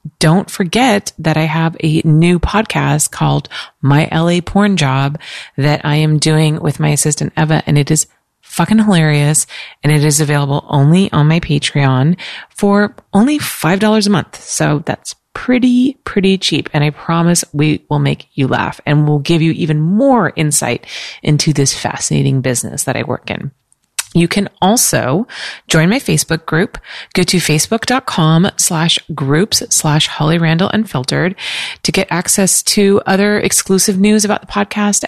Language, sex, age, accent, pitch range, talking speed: English, female, 30-49, American, 150-200 Hz, 160 wpm